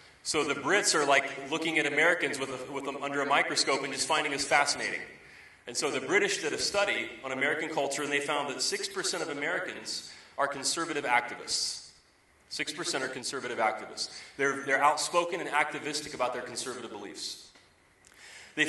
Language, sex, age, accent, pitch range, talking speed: English, male, 30-49, American, 130-155 Hz, 175 wpm